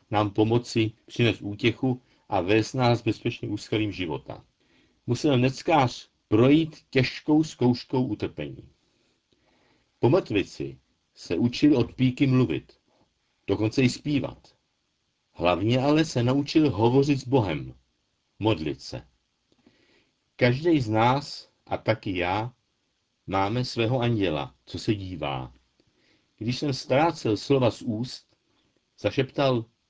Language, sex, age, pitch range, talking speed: Czech, male, 60-79, 105-135 Hz, 105 wpm